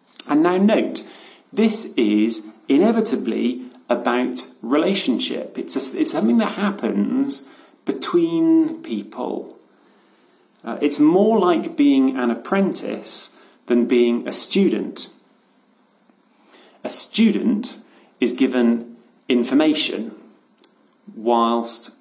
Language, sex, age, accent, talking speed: English, male, 40-59, British, 85 wpm